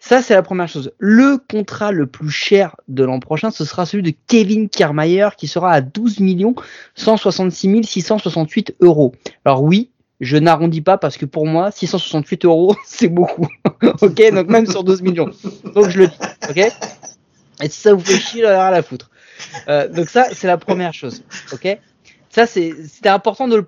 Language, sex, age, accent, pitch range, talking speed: French, male, 30-49, French, 150-205 Hz, 185 wpm